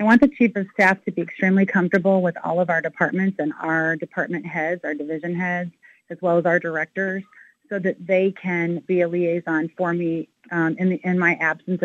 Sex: female